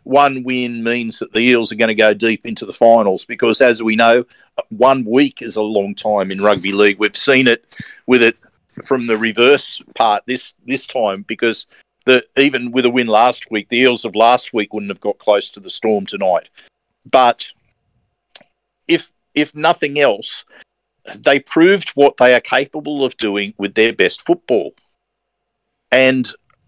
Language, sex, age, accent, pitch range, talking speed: English, male, 50-69, Australian, 115-145 Hz, 175 wpm